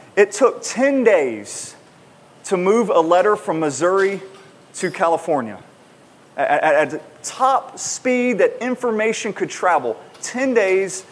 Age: 30-49